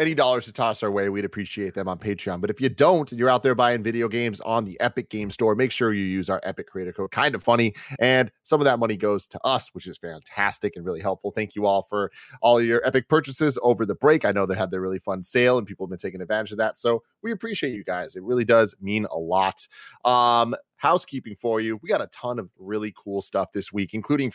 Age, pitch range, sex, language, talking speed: 30-49, 100-120 Hz, male, English, 260 wpm